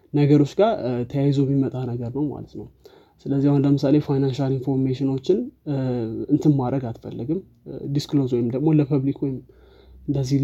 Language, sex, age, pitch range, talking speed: Amharic, male, 20-39, 125-150 Hz, 120 wpm